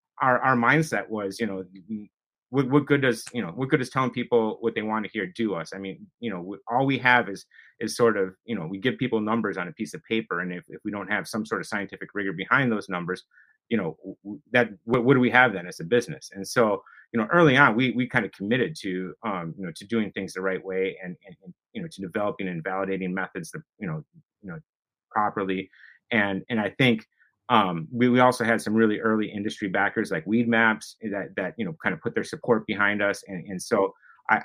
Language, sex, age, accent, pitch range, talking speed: English, male, 30-49, American, 95-125 Hz, 240 wpm